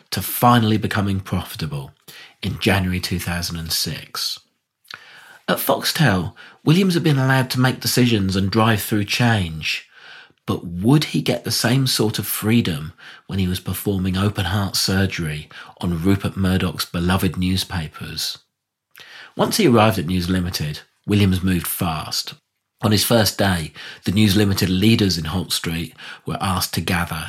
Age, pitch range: 40-59, 90-110 Hz